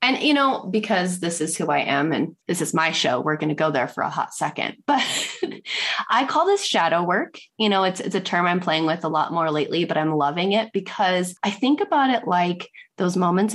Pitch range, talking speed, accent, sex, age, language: 155-195 Hz, 240 wpm, American, female, 20-39, English